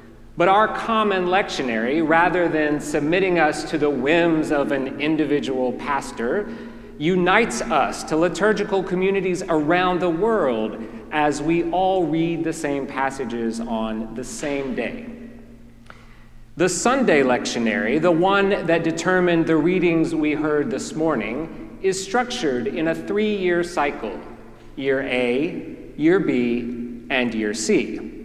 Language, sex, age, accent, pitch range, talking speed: English, male, 40-59, American, 140-200 Hz, 125 wpm